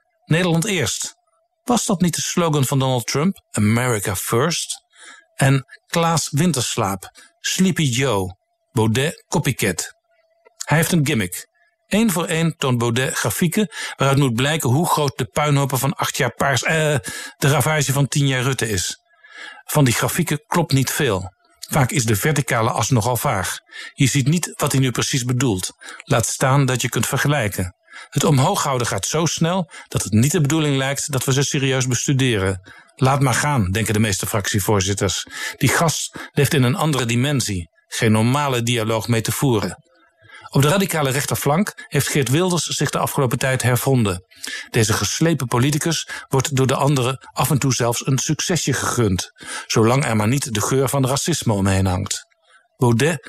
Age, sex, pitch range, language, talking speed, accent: 50-69, male, 120-160 Hz, Dutch, 165 wpm, Dutch